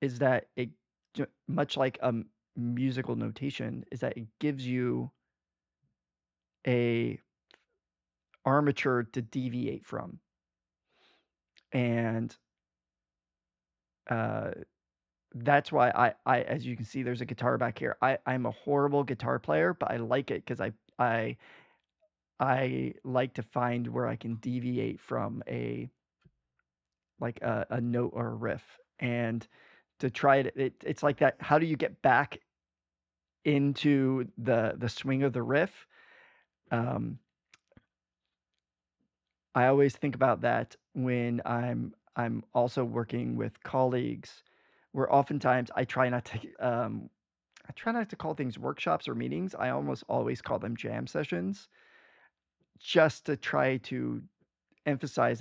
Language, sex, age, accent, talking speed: English, male, 20-39, American, 135 wpm